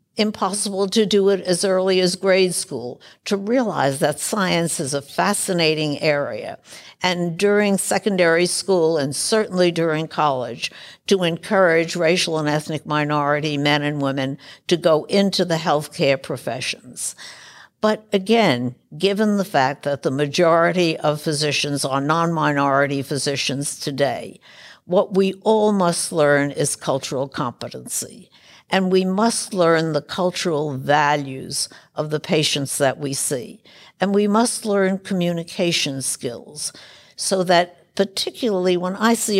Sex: female